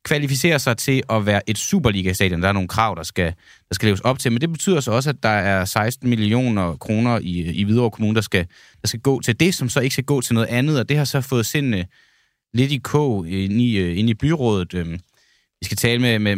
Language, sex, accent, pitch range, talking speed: Danish, male, native, 95-125 Hz, 240 wpm